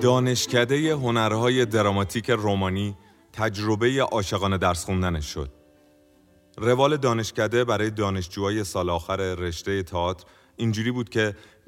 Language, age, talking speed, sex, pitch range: Persian, 30-49, 105 wpm, male, 90-115 Hz